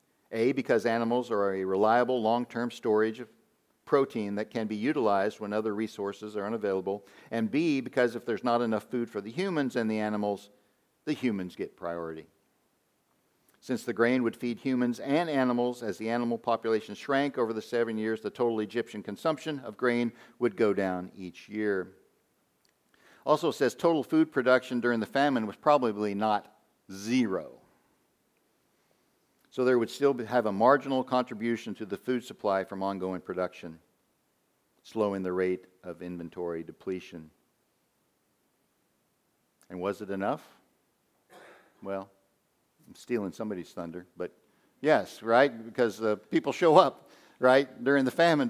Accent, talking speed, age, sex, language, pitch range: American, 150 wpm, 50-69, male, English, 95-125 Hz